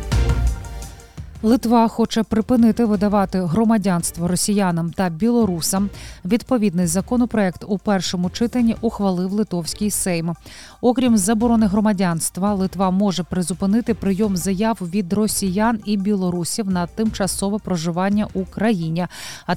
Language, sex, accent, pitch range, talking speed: Ukrainian, female, native, 185-225 Hz, 100 wpm